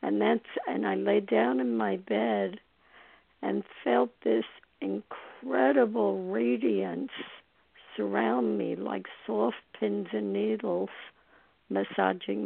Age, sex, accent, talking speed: 60-79, female, American, 105 wpm